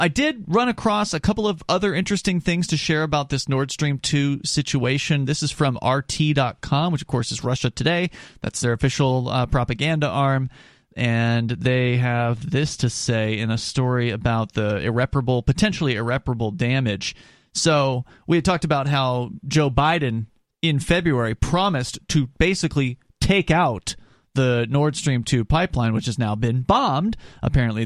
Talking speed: 160 wpm